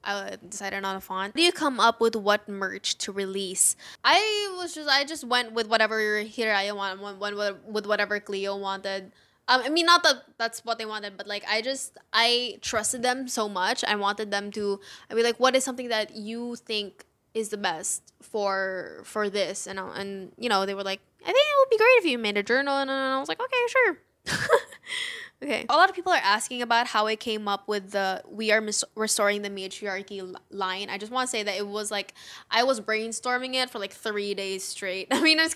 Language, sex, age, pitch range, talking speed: English, female, 10-29, 200-255 Hz, 225 wpm